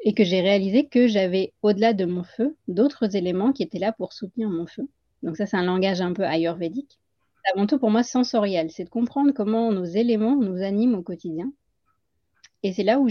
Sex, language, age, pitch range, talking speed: female, French, 30-49, 175-225 Hz, 210 wpm